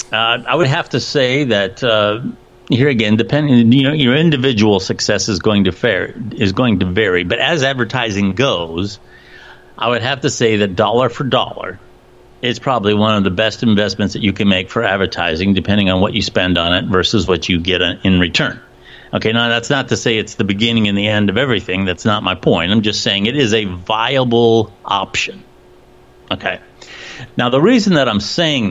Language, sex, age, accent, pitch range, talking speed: English, male, 50-69, American, 95-120 Hz, 200 wpm